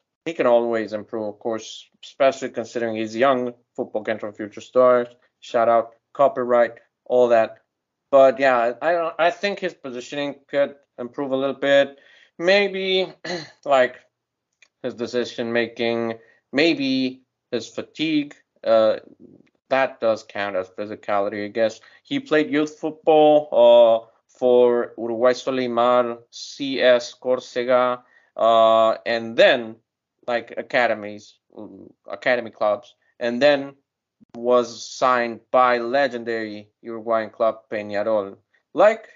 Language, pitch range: English, 115-140 Hz